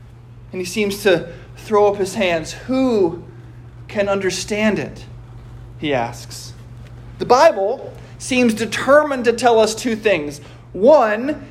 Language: English